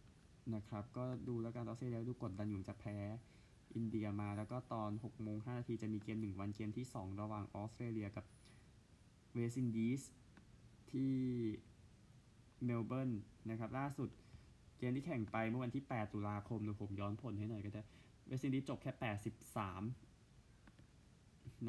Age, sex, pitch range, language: 20-39, male, 105-120 Hz, Thai